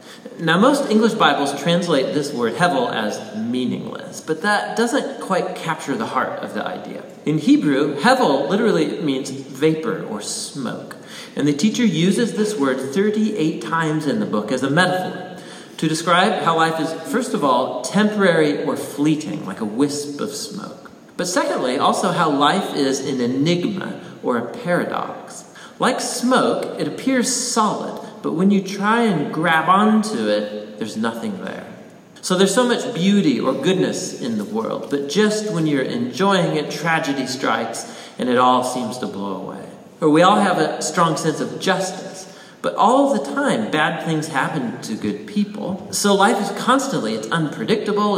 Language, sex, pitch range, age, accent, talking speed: English, male, 155-225 Hz, 40-59, American, 170 wpm